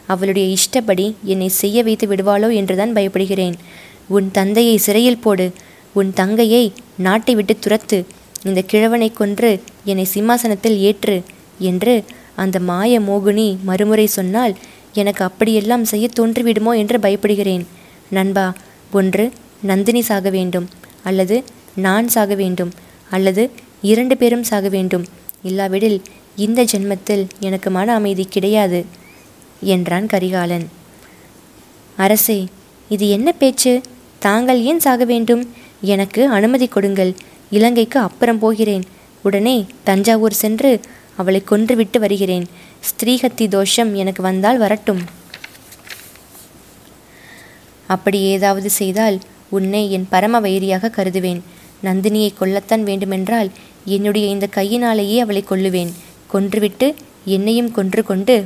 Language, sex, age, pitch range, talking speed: Tamil, female, 20-39, 190-225 Hz, 105 wpm